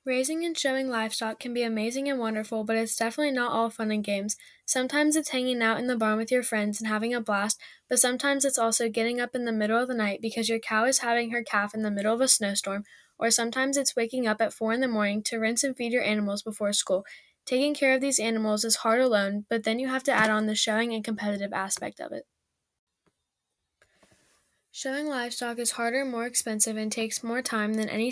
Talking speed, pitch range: 230 wpm, 215-250 Hz